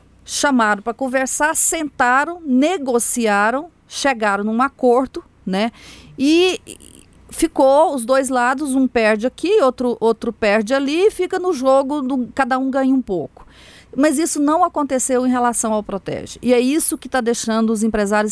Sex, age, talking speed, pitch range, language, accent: female, 40-59, 150 wpm, 210-270 Hz, Portuguese, Brazilian